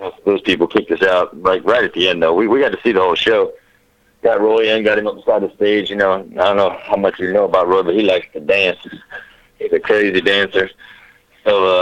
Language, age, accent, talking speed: English, 60-79, American, 265 wpm